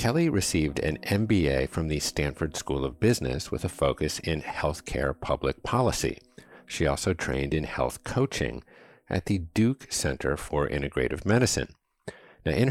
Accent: American